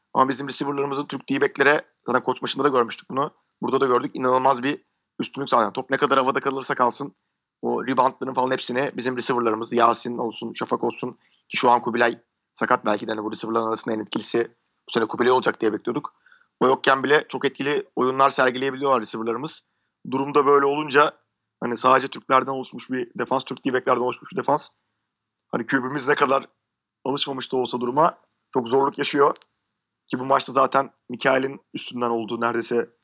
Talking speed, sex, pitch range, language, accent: 175 wpm, male, 120-140 Hz, Turkish, native